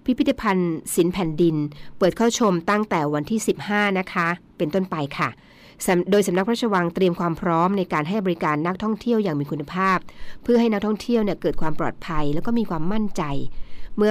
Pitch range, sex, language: 155-200 Hz, female, Thai